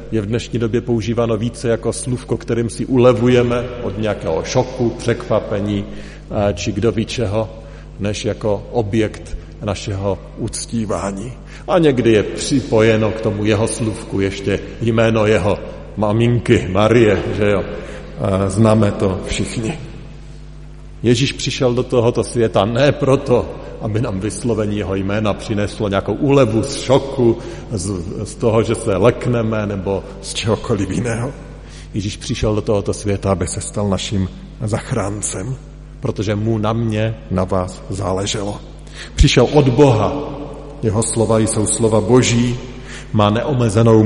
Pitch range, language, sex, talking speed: 100-120 Hz, Slovak, male, 130 wpm